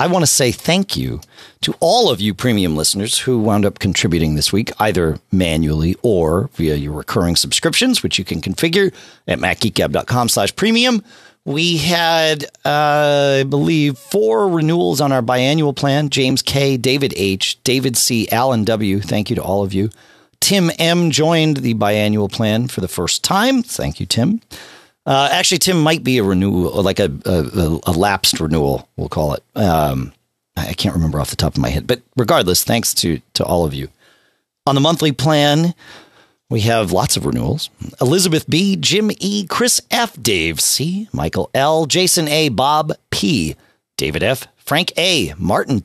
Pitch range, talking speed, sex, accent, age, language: 100-160 Hz, 175 wpm, male, American, 40-59, English